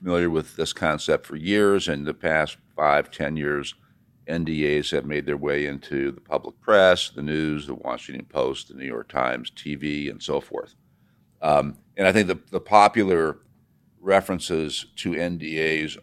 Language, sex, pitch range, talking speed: English, male, 75-90 Hz, 165 wpm